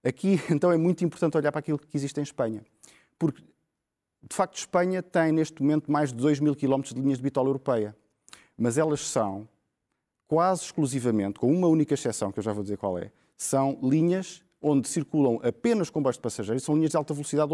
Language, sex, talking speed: Portuguese, male, 200 wpm